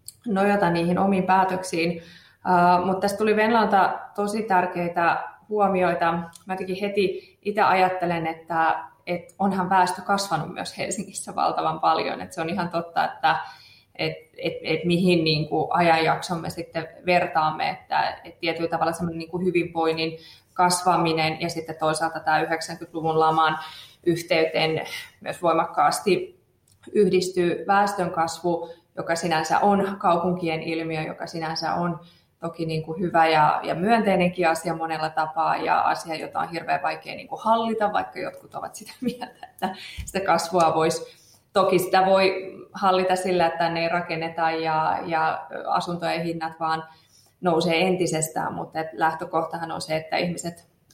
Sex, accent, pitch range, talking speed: female, native, 160-185 Hz, 135 wpm